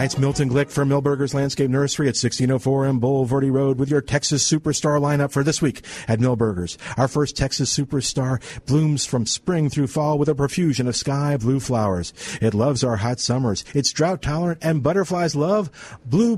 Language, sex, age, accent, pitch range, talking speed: English, male, 50-69, American, 120-160 Hz, 185 wpm